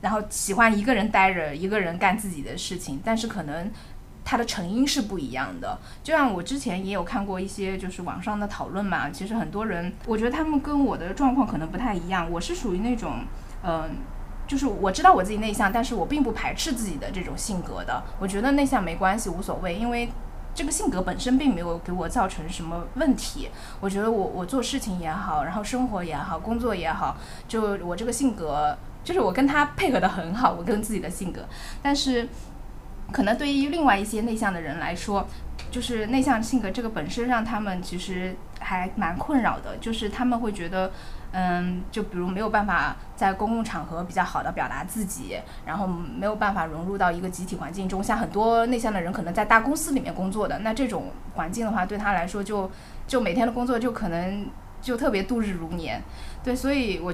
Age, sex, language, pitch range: 20-39, female, Chinese, 185-245 Hz